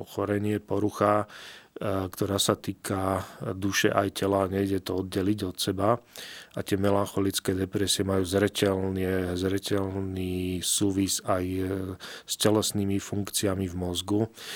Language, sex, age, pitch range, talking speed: Slovak, male, 40-59, 95-105 Hz, 105 wpm